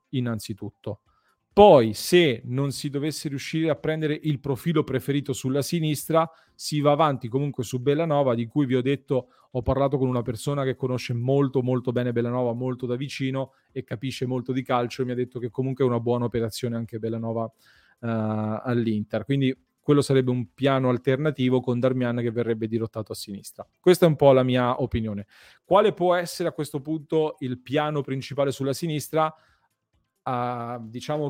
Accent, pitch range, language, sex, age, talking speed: native, 120-145 Hz, Italian, male, 40-59, 175 wpm